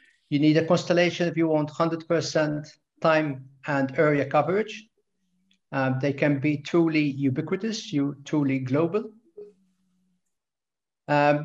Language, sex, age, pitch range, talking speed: Turkish, male, 50-69, 135-170 Hz, 110 wpm